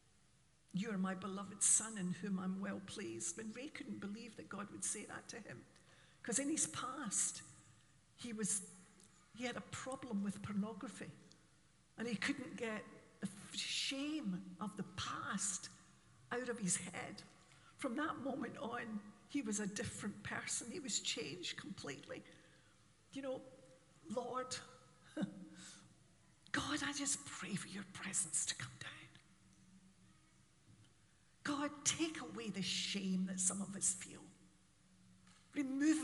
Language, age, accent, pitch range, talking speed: English, 60-79, British, 185-260 Hz, 135 wpm